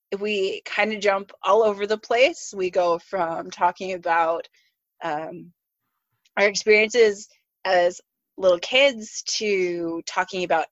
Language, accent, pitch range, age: English, American, 180-230 Hz, 20-39